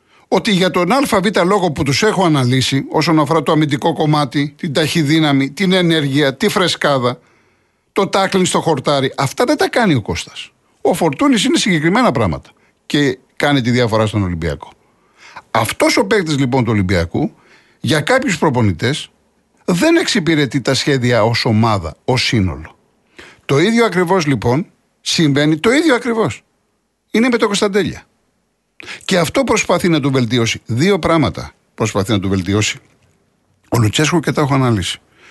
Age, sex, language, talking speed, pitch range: 60-79, male, Greek, 150 wpm, 105-165 Hz